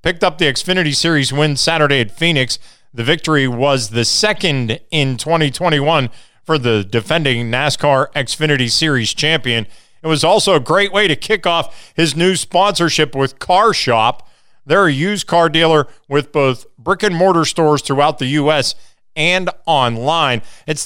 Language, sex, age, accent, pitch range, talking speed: English, male, 40-59, American, 130-185 Hz, 150 wpm